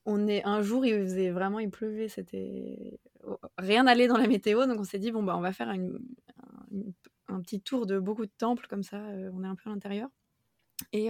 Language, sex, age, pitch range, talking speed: French, female, 20-39, 195-235 Hz, 230 wpm